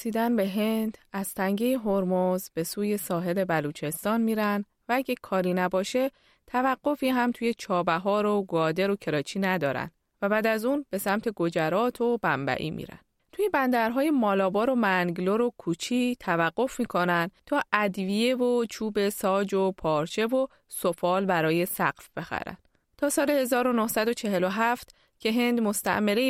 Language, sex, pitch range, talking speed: Persian, female, 185-235 Hz, 140 wpm